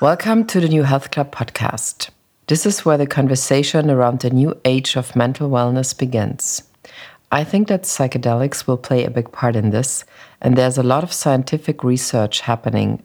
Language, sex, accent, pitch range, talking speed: English, female, German, 120-155 Hz, 180 wpm